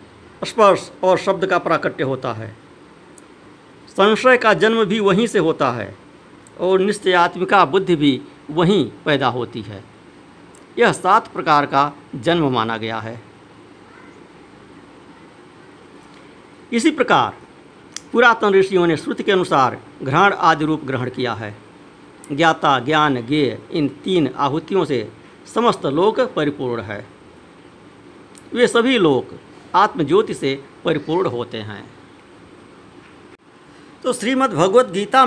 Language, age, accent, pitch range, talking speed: Hindi, 50-69, native, 145-195 Hz, 110 wpm